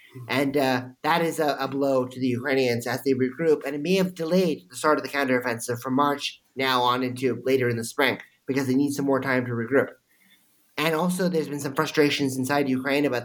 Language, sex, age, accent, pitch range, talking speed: English, male, 30-49, American, 130-155 Hz, 220 wpm